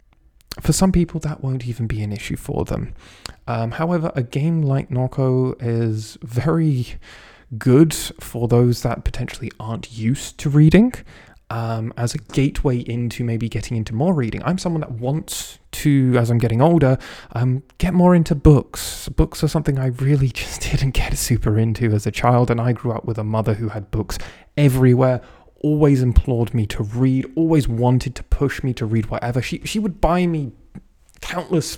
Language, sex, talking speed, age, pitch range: English, male, 180 wpm, 20-39, 115-140 Hz